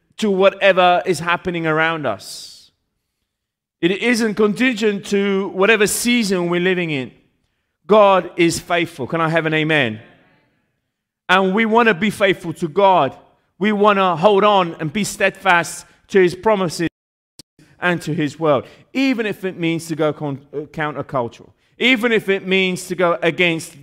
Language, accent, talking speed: Italian, British, 155 wpm